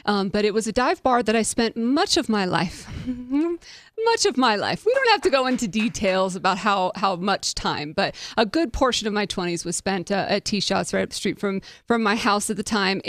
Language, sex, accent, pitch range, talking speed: English, female, American, 195-255 Hz, 245 wpm